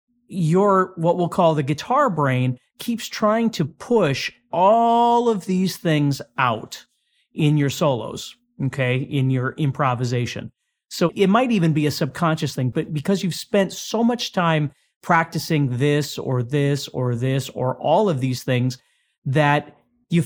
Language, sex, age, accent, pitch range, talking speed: English, male, 40-59, American, 145-190 Hz, 150 wpm